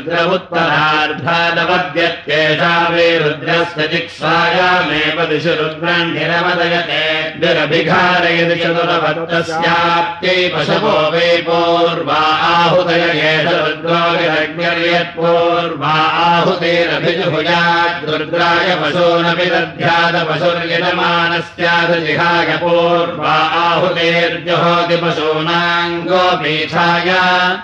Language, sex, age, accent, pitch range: Russian, male, 60-79, Indian, 165-175 Hz